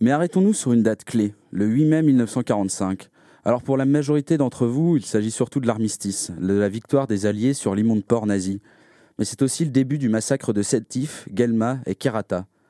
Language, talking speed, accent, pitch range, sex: French, 200 wpm, French, 105-135 Hz, male